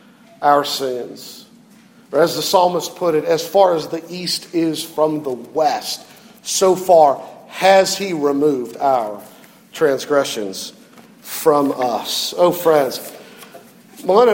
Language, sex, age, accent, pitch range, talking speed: English, male, 50-69, American, 150-200 Hz, 120 wpm